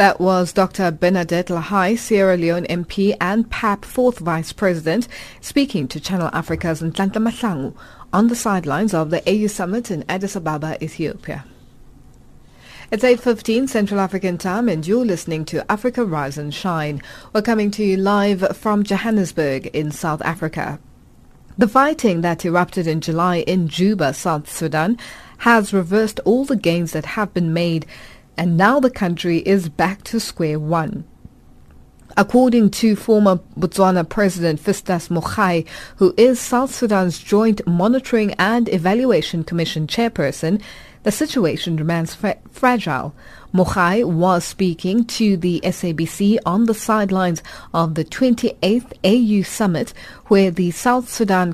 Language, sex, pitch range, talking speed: English, female, 165-215 Hz, 140 wpm